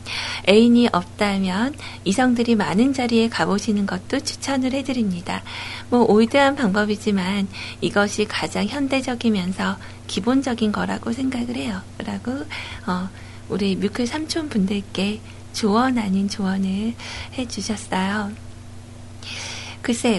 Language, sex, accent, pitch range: Korean, female, native, 190-240 Hz